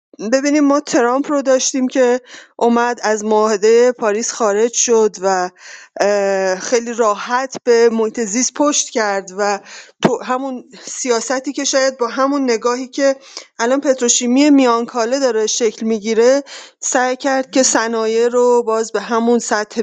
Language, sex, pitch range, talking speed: Persian, female, 215-260 Hz, 135 wpm